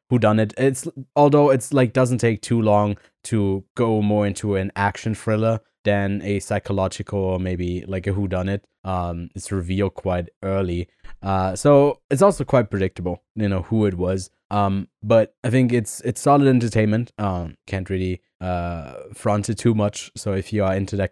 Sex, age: male, 20-39